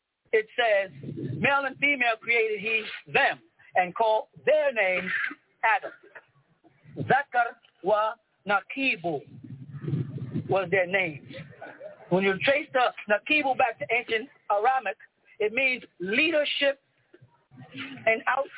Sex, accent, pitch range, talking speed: male, American, 205-270 Hz, 105 wpm